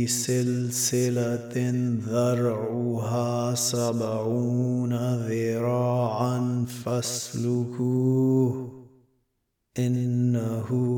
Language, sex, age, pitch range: Arabic, male, 30-49, 120-125 Hz